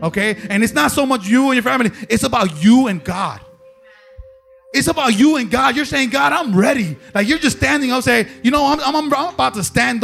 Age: 30-49